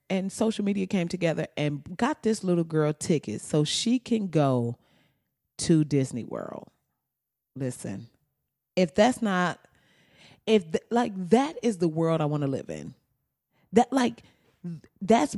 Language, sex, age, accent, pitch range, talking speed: English, female, 30-49, American, 160-220 Hz, 140 wpm